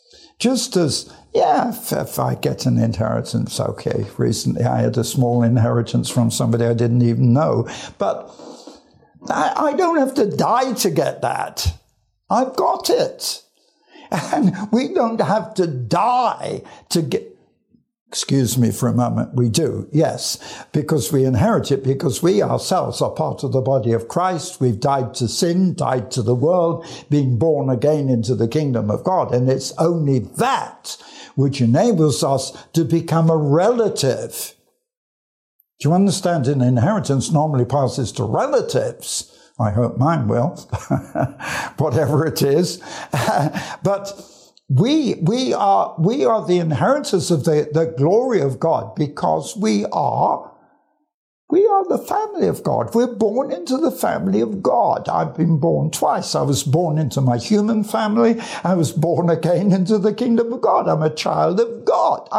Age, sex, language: 60-79, male, English